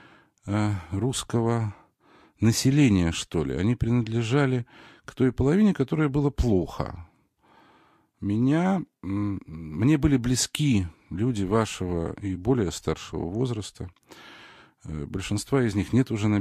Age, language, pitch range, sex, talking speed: 50-69, Russian, 90-125 Hz, male, 100 wpm